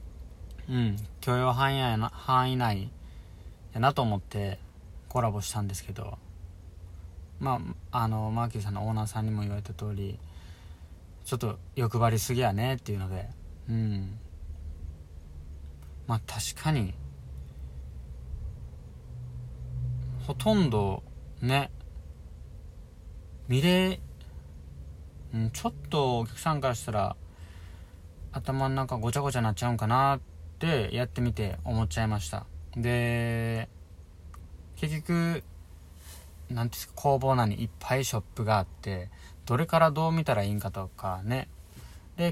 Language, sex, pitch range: Japanese, male, 85-120 Hz